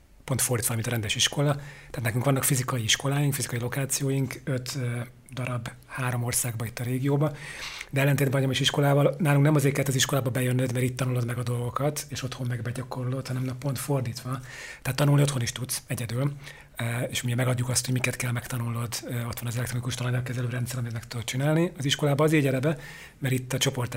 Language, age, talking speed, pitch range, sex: Hungarian, 40-59, 190 wpm, 125-140 Hz, male